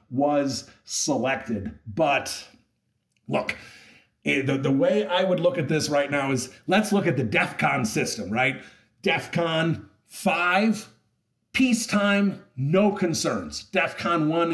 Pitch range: 125-175 Hz